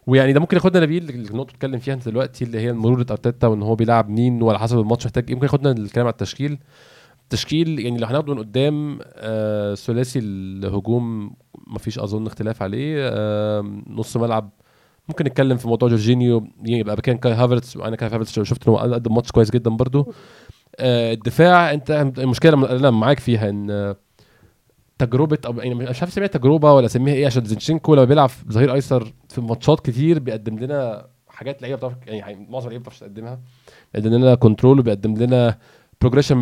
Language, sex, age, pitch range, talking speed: Arabic, male, 20-39, 115-140 Hz, 175 wpm